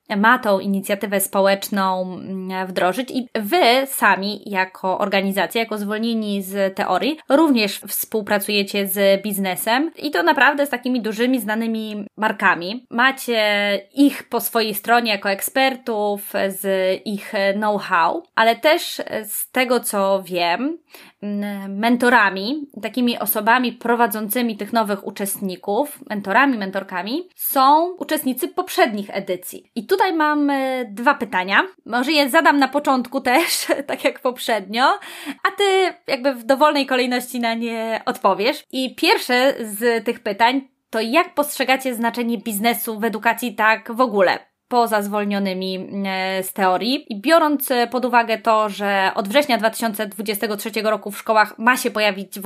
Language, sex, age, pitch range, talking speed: Polish, female, 20-39, 205-265 Hz, 130 wpm